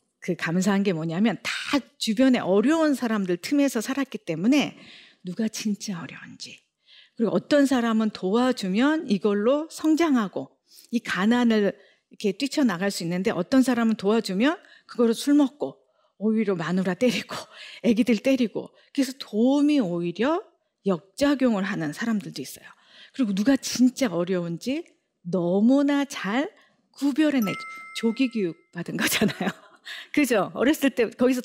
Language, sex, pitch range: Korean, female, 195-270 Hz